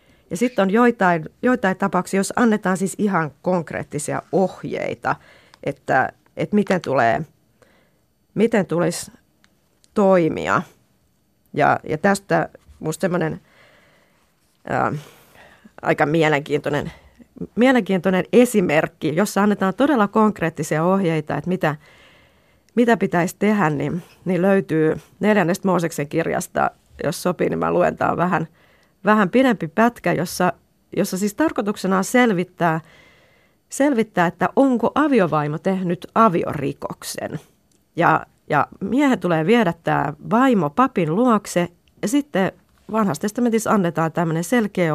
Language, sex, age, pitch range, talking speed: Finnish, female, 30-49, 160-215 Hz, 105 wpm